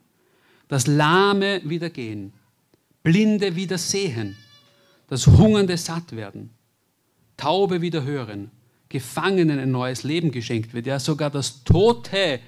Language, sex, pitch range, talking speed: German, male, 120-170 Hz, 115 wpm